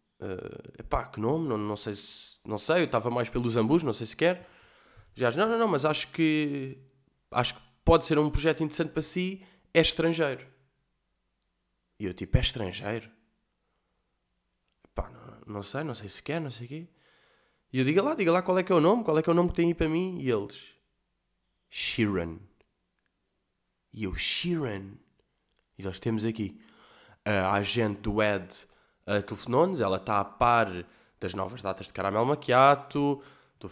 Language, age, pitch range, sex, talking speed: Portuguese, 20-39, 105-155 Hz, male, 185 wpm